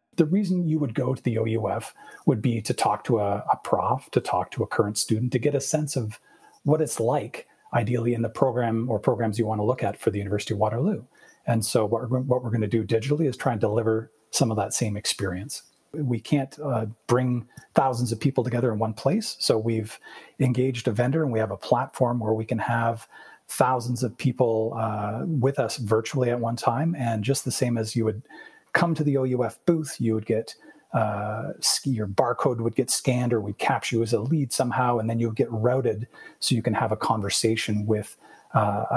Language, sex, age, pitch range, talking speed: English, male, 40-59, 110-130 Hz, 215 wpm